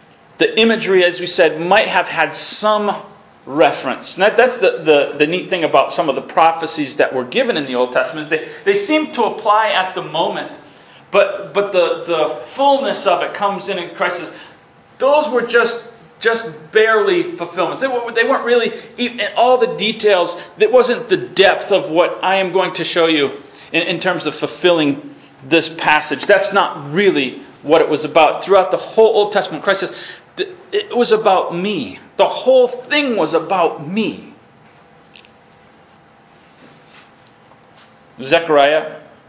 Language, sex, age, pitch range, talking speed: English, male, 40-59, 140-230 Hz, 165 wpm